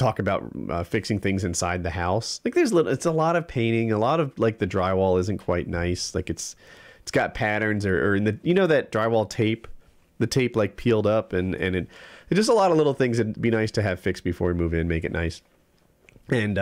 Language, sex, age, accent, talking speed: English, male, 30-49, American, 245 wpm